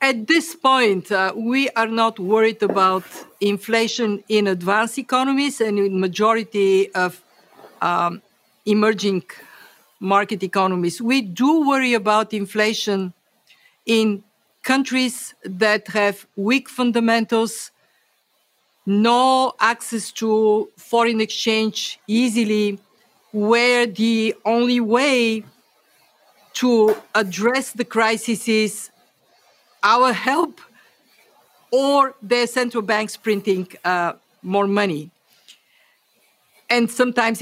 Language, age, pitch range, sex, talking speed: English, 50-69, 205-250 Hz, female, 95 wpm